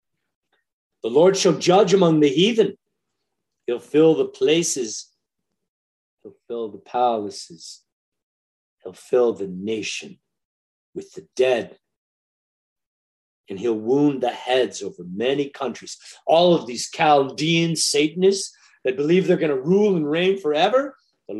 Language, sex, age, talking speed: English, male, 50-69, 125 wpm